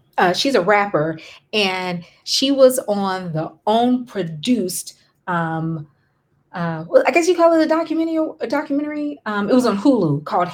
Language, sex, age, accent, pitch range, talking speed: English, female, 30-49, American, 170-225 Hz, 160 wpm